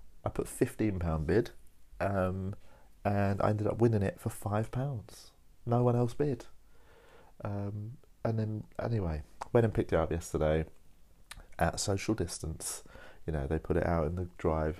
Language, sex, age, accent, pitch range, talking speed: English, male, 40-59, British, 80-100 Hz, 160 wpm